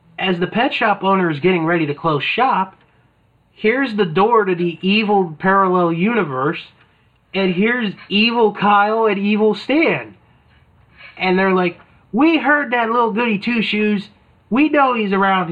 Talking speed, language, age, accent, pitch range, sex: 150 wpm, English, 30-49, American, 145-200 Hz, male